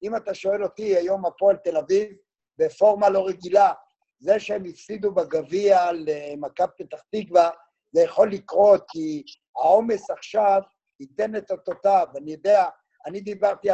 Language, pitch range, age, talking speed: Hebrew, 180-220 Hz, 50-69, 135 wpm